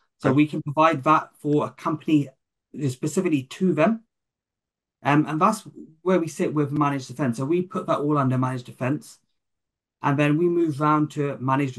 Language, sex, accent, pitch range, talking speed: English, male, British, 125-150 Hz, 185 wpm